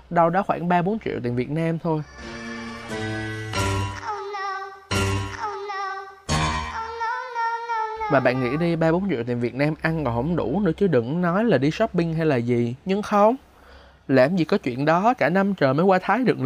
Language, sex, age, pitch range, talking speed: Vietnamese, male, 20-39, 125-185 Hz, 170 wpm